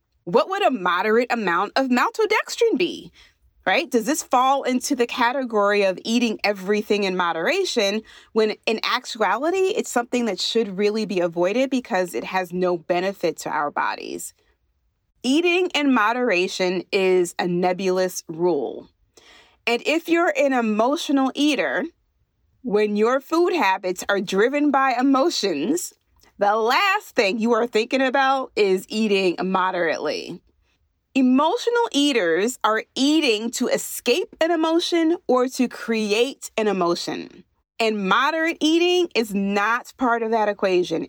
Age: 30-49